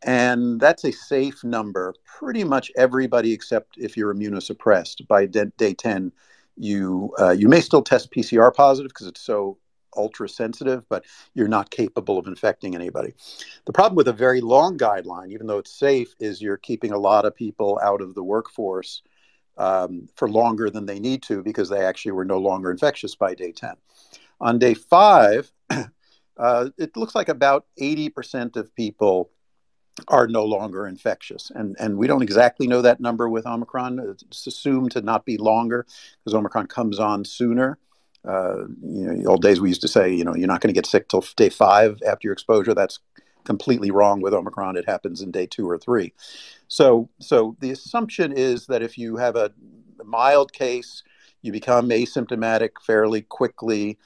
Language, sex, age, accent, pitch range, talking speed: English, male, 50-69, American, 105-125 Hz, 180 wpm